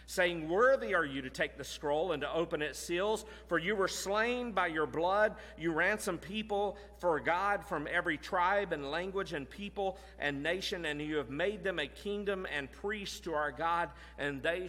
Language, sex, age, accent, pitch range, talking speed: English, male, 40-59, American, 130-195 Hz, 195 wpm